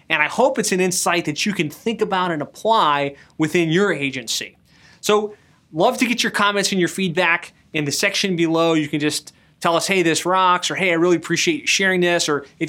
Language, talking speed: English, 220 wpm